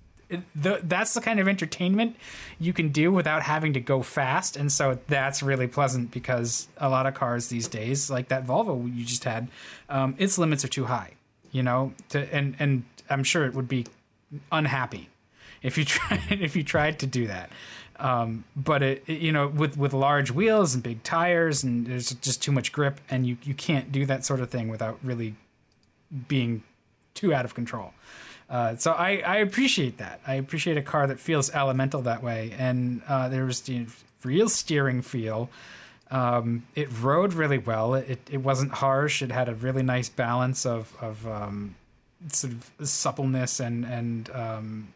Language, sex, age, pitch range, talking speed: English, male, 20-39, 120-145 Hz, 190 wpm